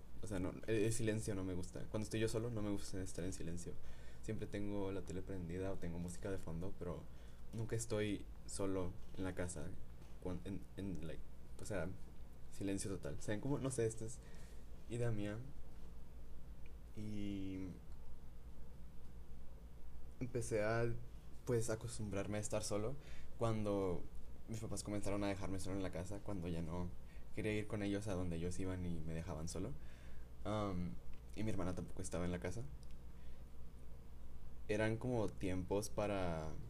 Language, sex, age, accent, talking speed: Spanish, male, 20-39, Mexican, 155 wpm